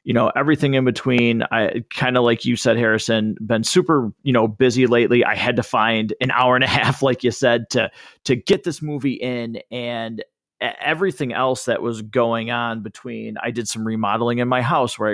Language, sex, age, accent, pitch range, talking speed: English, male, 30-49, American, 110-130 Hz, 205 wpm